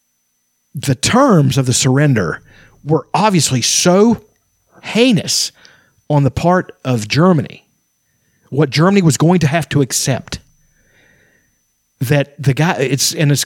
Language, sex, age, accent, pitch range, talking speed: English, male, 40-59, American, 130-175 Hz, 125 wpm